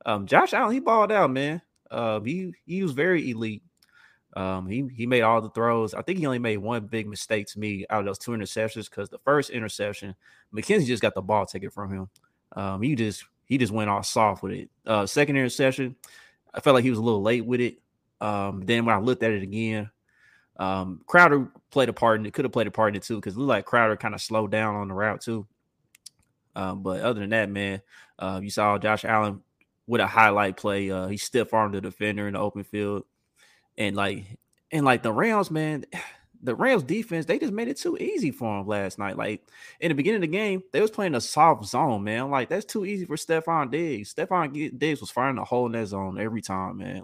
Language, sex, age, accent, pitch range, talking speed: English, male, 20-39, American, 100-125 Hz, 235 wpm